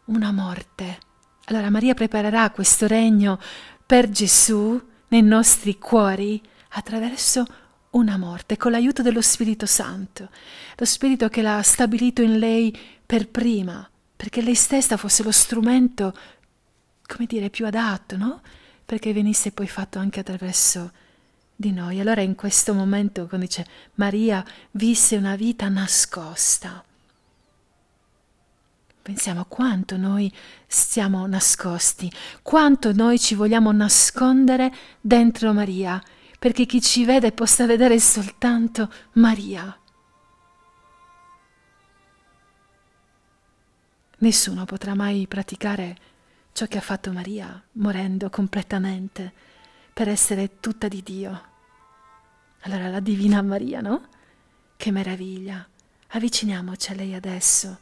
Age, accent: 40-59, native